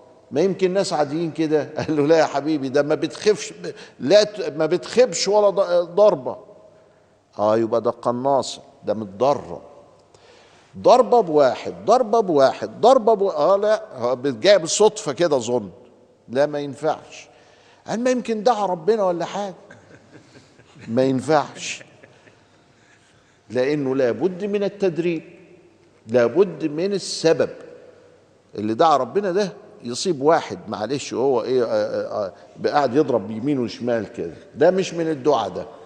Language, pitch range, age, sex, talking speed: Arabic, 140-200 Hz, 50-69, male, 125 wpm